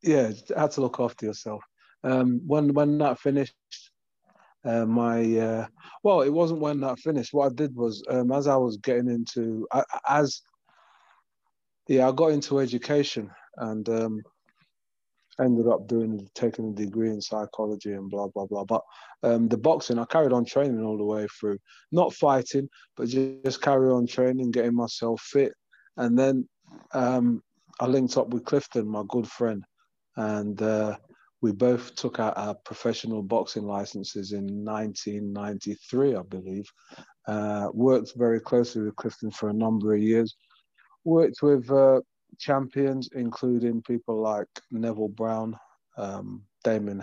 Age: 20-39